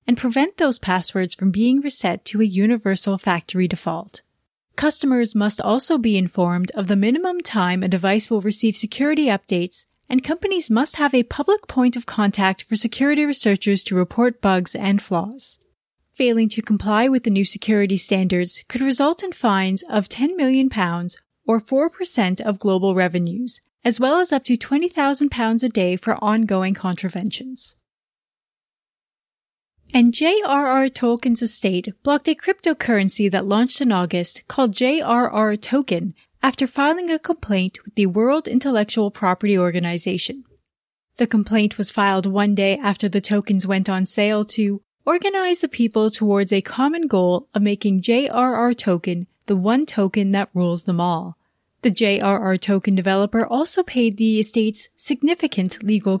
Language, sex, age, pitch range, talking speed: English, female, 30-49, 195-255 Hz, 150 wpm